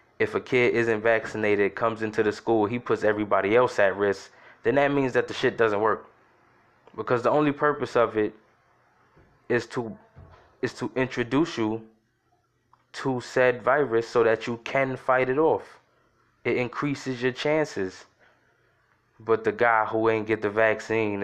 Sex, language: male, English